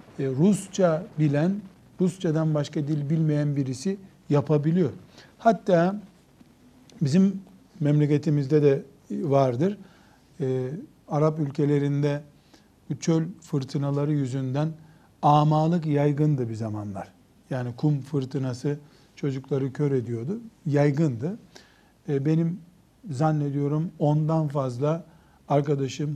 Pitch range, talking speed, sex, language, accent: 140-170 Hz, 85 wpm, male, Turkish, native